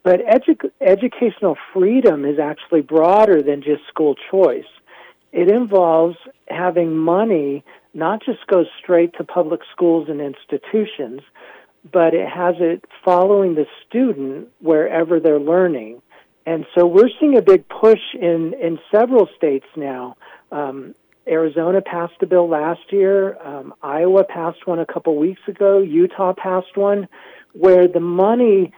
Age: 50-69